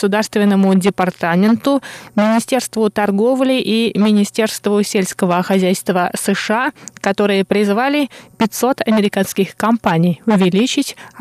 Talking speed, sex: 80 wpm, female